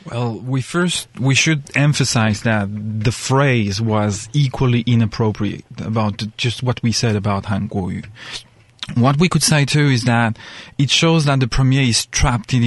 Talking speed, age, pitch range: 160 wpm, 30-49, 115-140 Hz